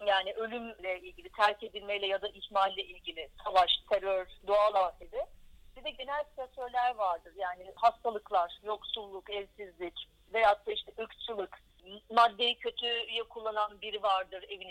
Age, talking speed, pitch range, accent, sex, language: 40-59, 130 wpm, 190-245 Hz, Turkish, female, English